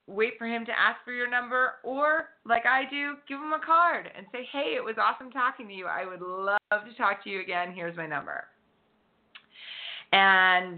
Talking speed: 205 wpm